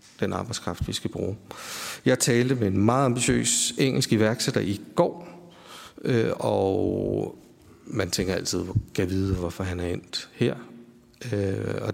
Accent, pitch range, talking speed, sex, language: native, 100-130 Hz, 135 wpm, male, Danish